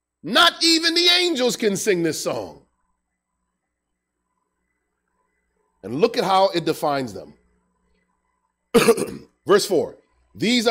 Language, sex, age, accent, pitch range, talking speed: English, male, 40-59, American, 155-235 Hz, 100 wpm